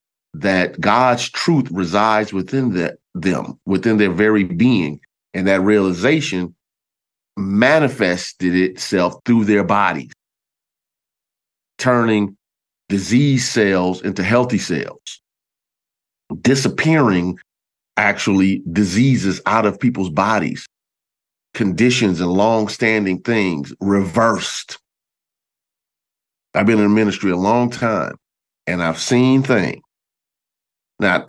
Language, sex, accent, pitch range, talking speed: English, male, American, 95-125 Hz, 95 wpm